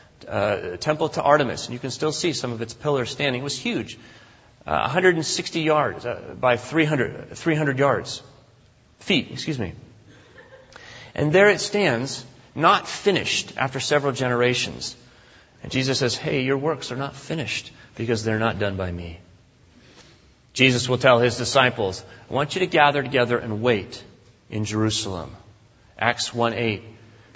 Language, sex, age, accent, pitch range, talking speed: English, male, 30-49, American, 110-150 Hz, 150 wpm